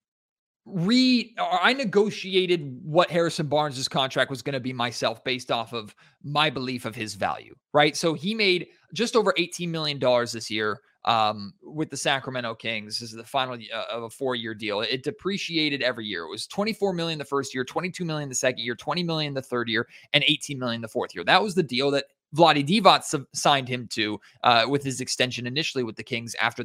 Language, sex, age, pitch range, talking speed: English, male, 20-39, 125-180 Hz, 205 wpm